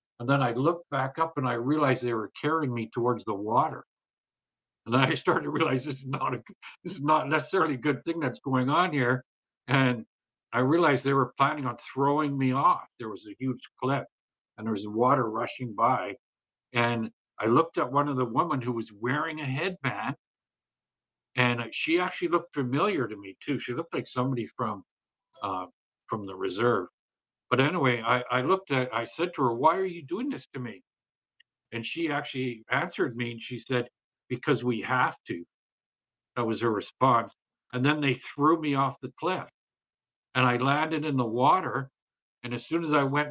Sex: male